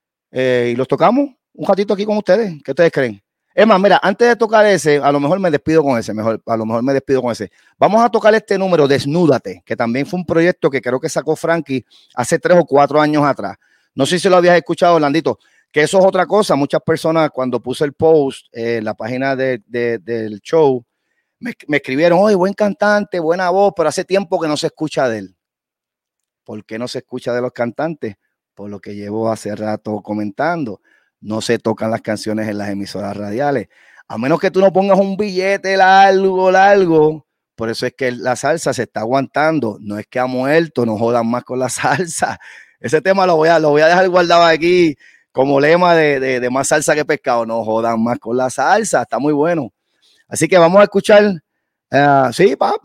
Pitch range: 120-185 Hz